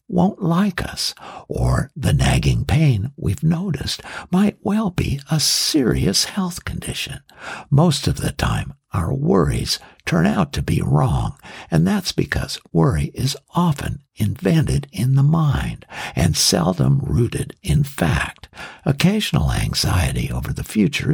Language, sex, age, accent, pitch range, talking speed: English, male, 60-79, American, 125-160 Hz, 135 wpm